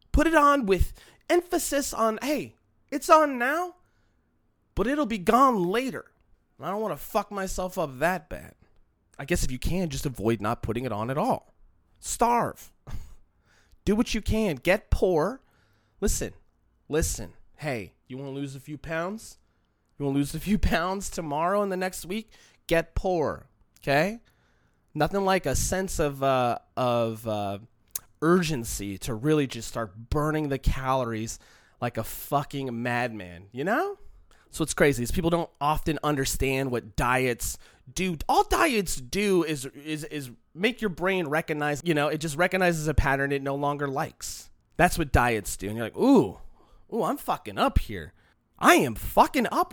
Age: 20-39